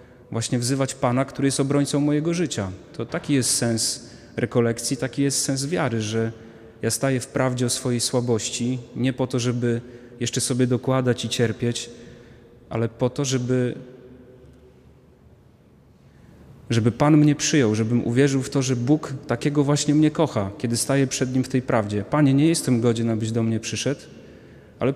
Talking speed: 165 wpm